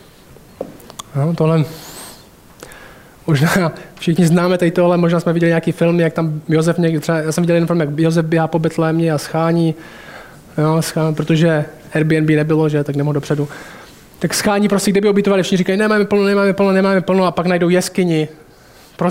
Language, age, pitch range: Czech, 20-39, 155-190 Hz